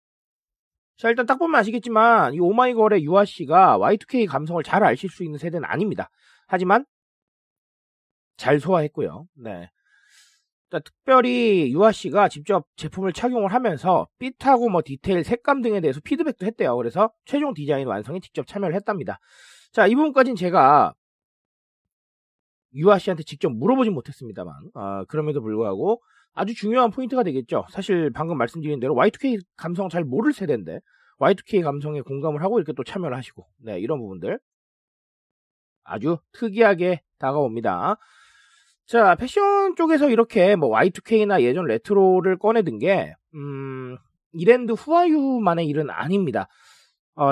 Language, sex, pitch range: Korean, male, 155-245 Hz